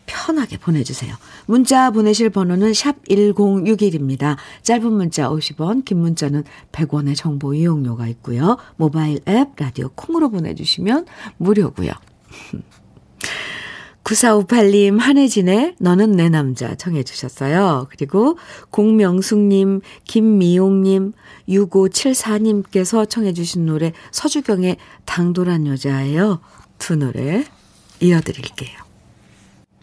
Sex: female